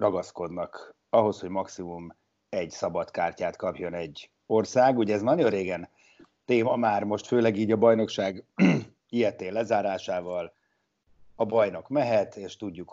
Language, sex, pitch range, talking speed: Hungarian, male, 105-125 Hz, 125 wpm